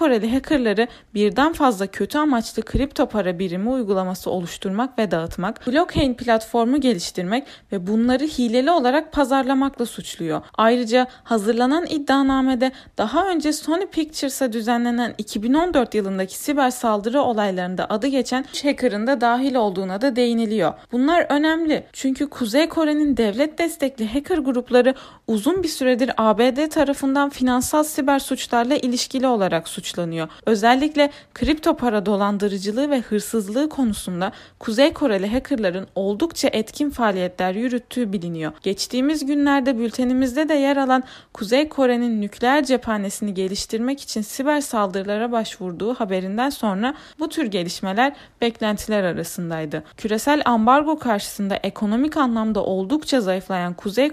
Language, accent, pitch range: Turkish, native, 215-280 Hz